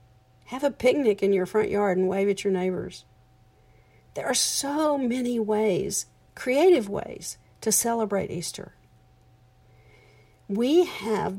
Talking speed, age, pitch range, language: 125 wpm, 50-69, 125-210 Hz, English